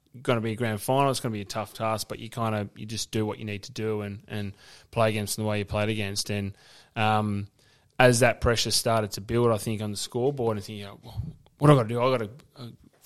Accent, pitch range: Australian, 110-125 Hz